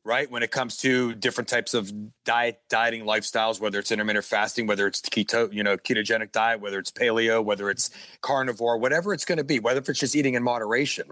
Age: 40-59